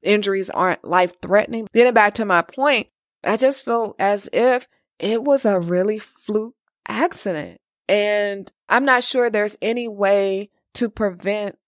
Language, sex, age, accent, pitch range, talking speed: English, female, 20-39, American, 190-235 Hz, 145 wpm